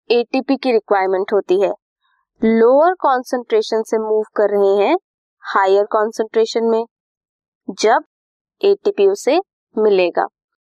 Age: 20-39